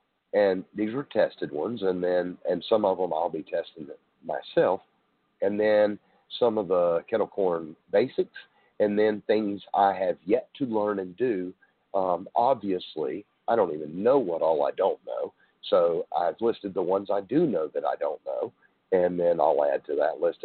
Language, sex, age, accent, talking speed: English, male, 50-69, American, 185 wpm